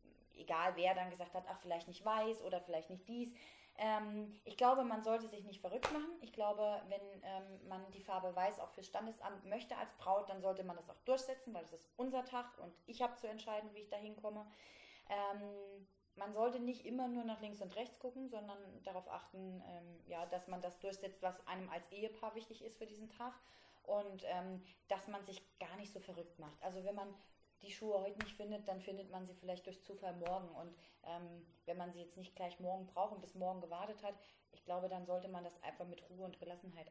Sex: female